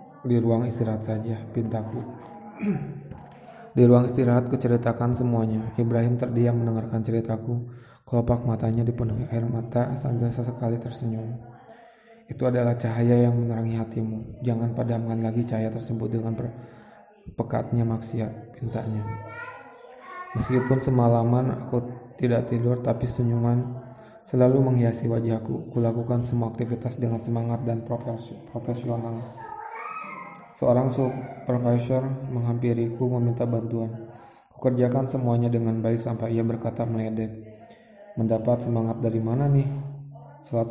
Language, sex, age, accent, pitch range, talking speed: Indonesian, male, 20-39, native, 115-125 Hz, 110 wpm